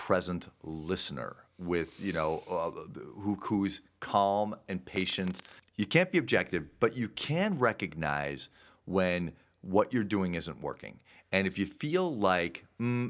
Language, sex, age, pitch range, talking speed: English, male, 40-59, 85-110 Hz, 140 wpm